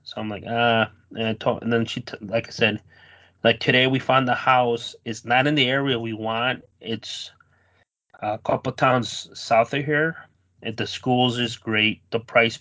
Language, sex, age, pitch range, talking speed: English, male, 30-49, 110-125 Hz, 195 wpm